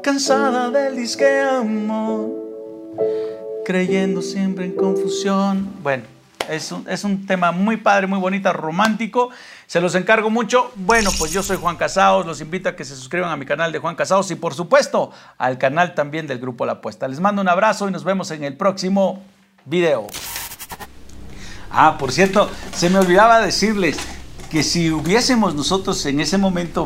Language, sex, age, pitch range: Spanish, male, 50-69, 115-185 Hz